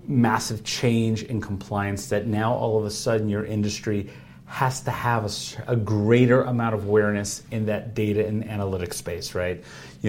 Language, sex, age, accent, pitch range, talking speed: English, male, 40-59, American, 105-130 Hz, 170 wpm